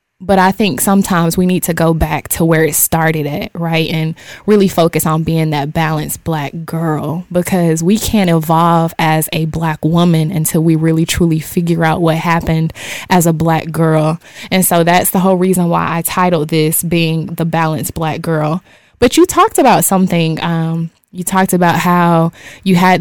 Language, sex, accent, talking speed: English, female, American, 185 wpm